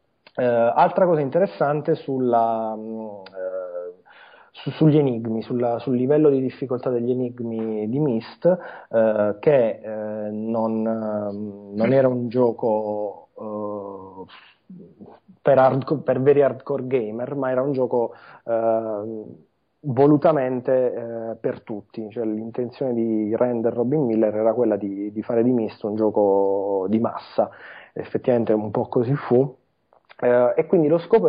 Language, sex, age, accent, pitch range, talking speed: Italian, male, 30-49, native, 110-130 Hz, 110 wpm